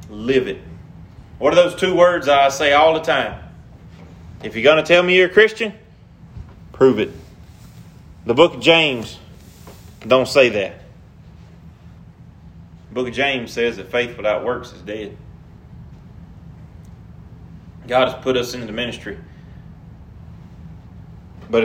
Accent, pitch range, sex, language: American, 100-150 Hz, male, English